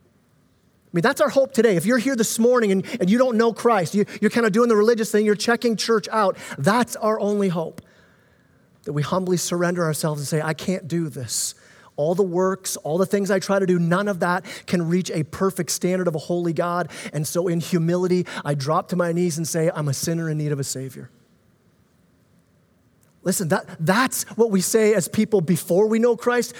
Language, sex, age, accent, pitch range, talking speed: English, male, 30-49, American, 160-210 Hz, 215 wpm